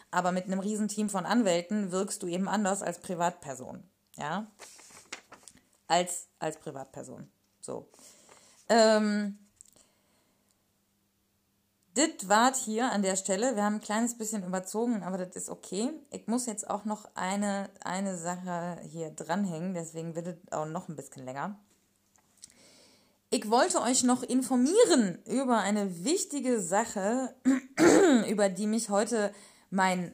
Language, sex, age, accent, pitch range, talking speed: German, female, 20-39, German, 175-235 Hz, 130 wpm